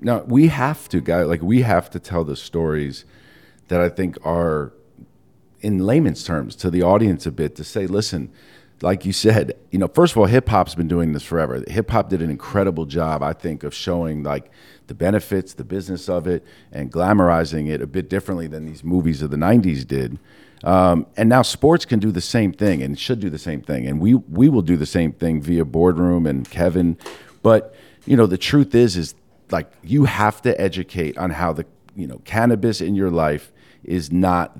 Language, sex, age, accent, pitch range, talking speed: English, male, 50-69, American, 85-105 Hz, 205 wpm